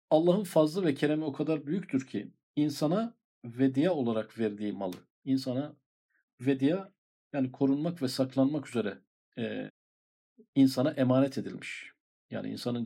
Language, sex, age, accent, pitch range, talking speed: Turkish, male, 50-69, native, 115-155 Hz, 120 wpm